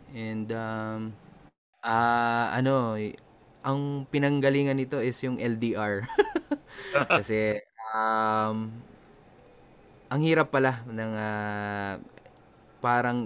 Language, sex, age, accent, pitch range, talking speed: Filipino, male, 20-39, native, 110-135 Hz, 85 wpm